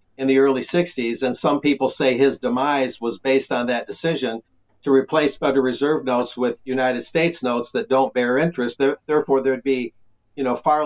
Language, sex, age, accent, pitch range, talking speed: English, male, 50-69, American, 120-150 Hz, 190 wpm